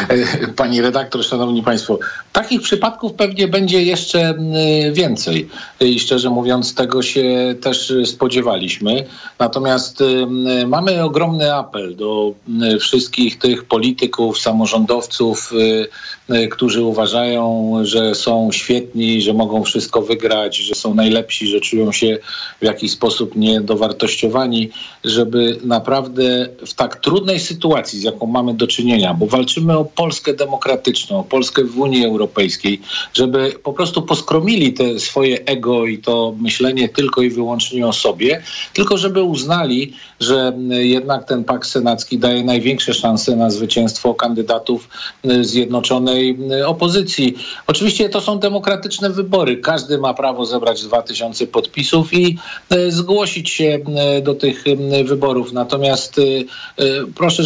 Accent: native